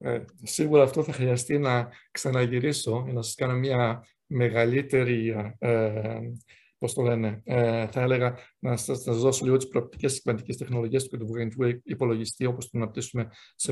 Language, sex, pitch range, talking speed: Greek, male, 120-140 Hz, 140 wpm